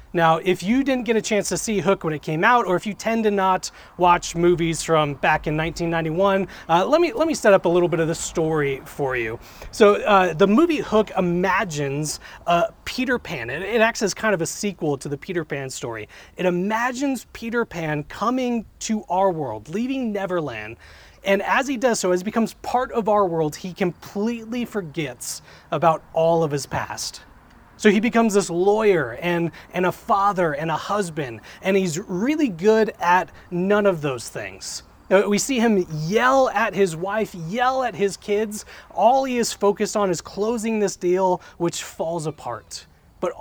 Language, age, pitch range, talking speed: English, 30-49, 160-215 Hz, 190 wpm